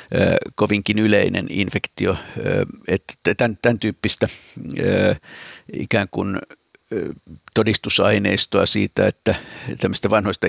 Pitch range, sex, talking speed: 100-110 Hz, male, 70 wpm